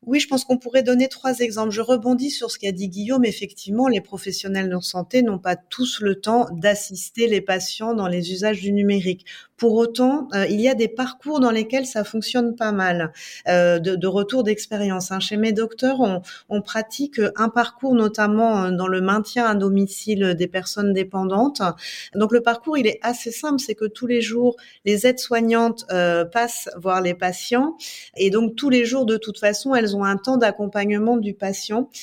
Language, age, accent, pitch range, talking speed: French, 40-59, French, 205-250 Hz, 195 wpm